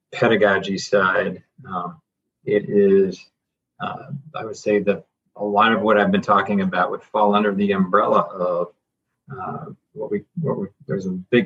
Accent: American